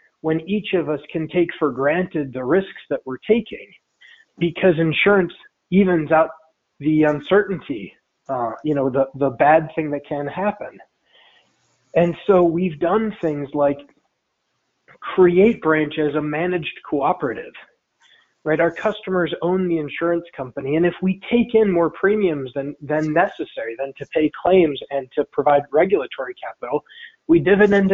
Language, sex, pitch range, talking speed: English, male, 150-190 Hz, 145 wpm